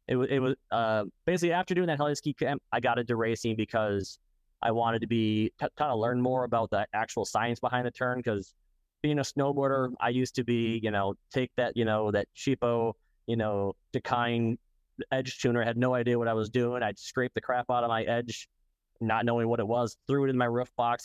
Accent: American